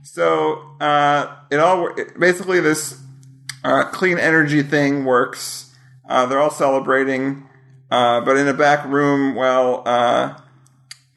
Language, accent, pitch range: English, American, 130-150 Hz